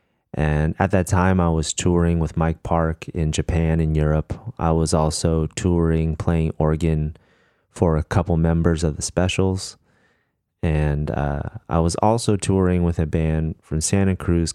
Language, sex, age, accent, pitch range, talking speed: English, male, 30-49, American, 80-90 Hz, 160 wpm